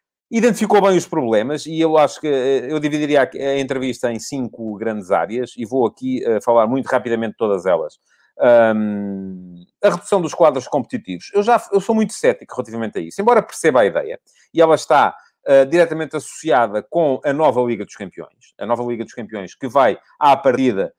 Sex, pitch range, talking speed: male, 110-150 Hz, 190 wpm